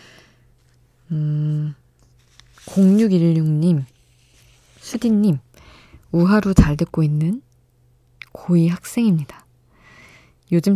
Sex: female